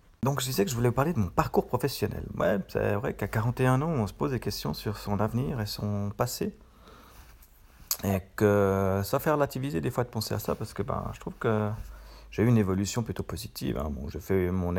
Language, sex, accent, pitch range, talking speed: English, male, French, 95-115 Hz, 230 wpm